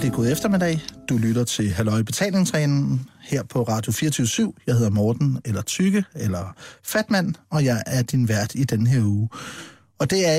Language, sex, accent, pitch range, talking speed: Danish, male, native, 115-145 Hz, 190 wpm